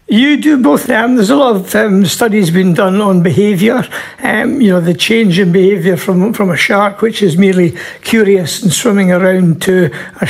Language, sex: English, male